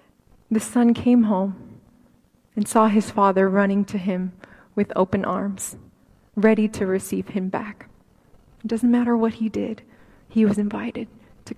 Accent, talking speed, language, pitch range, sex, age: American, 150 wpm, English, 210-245 Hz, female, 20-39